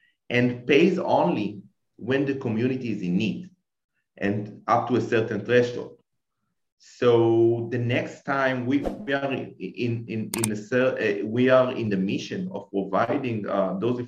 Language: English